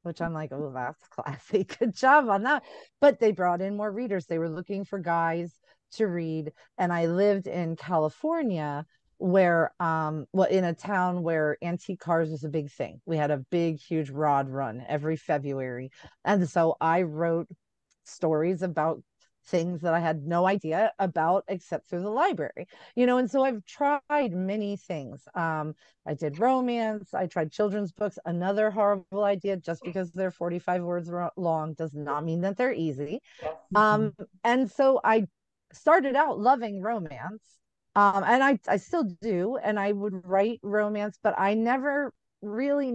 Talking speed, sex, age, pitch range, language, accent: 170 wpm, female, 40-59, 165-215 Hz, English, American